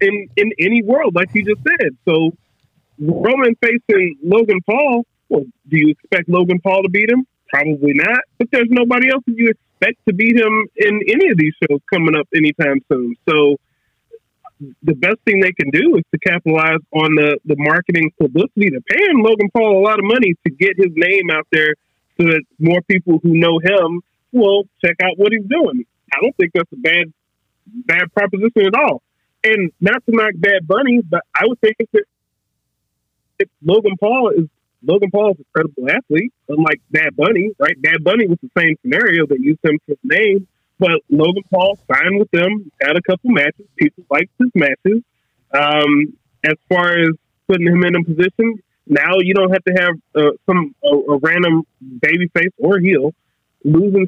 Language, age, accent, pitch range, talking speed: English, 30-49, American, 155-210 Hz, 190 wpm